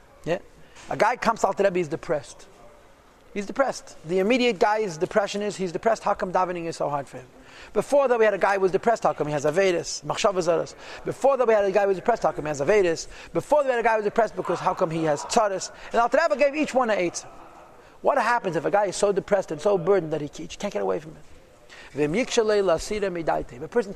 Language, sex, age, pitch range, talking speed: English, male, 40-59, 185-260 Hz, 255 wpm